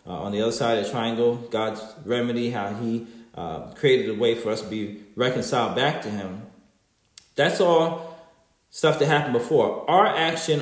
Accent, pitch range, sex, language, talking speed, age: American, 120-195 Hz, male, English, 180 wpm, 30-49